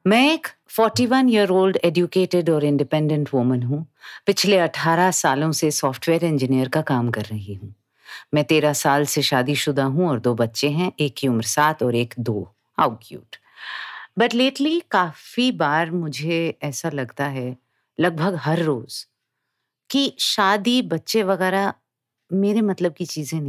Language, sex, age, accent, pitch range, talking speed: Hindi, female, 50-69, native, 120-170 Hz, 155 wpm